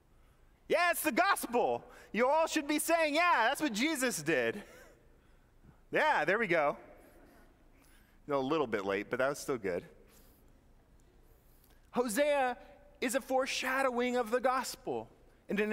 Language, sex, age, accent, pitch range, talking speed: English, male, 30-49, American, 170-230 Hz, 135 wpm